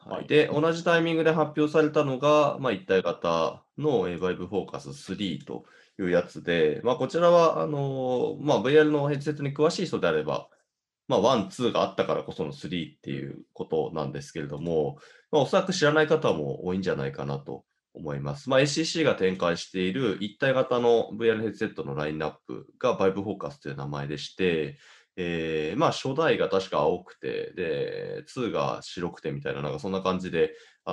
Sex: male